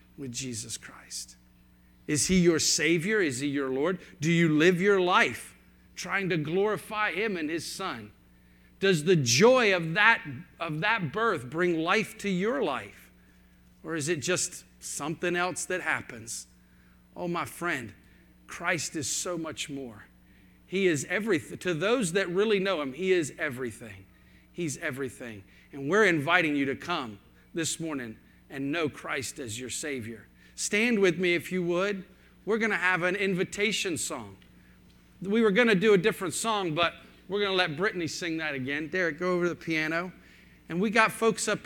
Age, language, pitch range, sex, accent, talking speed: 50-69, English, 140-190 Hz, male, American, 175 wpm